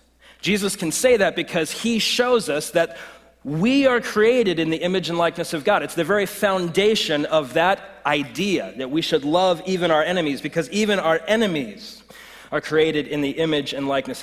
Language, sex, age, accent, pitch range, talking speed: English, male, 30-49, American, 130-185 Hz, 185 wpm